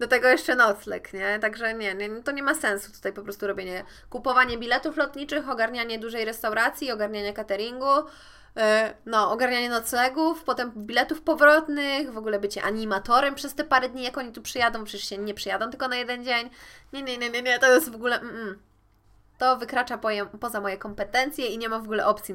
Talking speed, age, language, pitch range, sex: 190 wpm, 20-39, Polish, 220-270 Hz, female